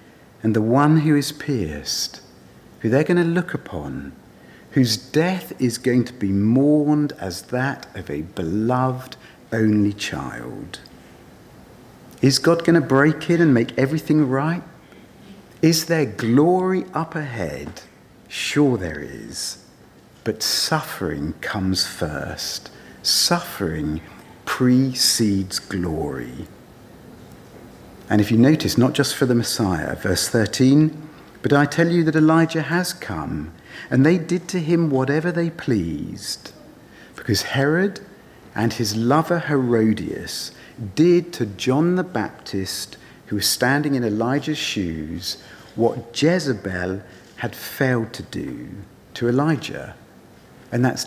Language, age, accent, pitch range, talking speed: English, 50-69, British, 105-155 Hz, 120 wpm